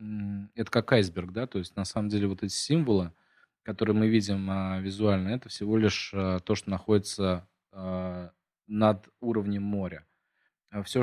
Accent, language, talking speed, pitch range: native, Russian, 140 wpm, 95-115 Hz